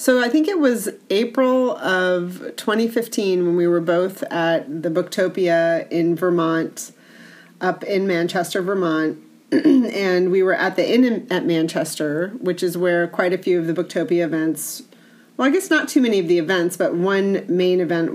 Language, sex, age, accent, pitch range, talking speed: English, female, 30-49, American, 170-230 Hz, 170 wpm